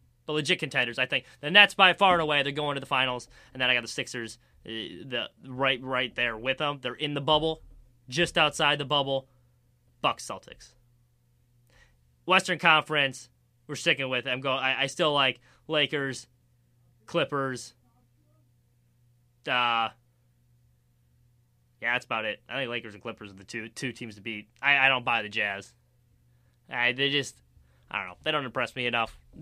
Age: 20-39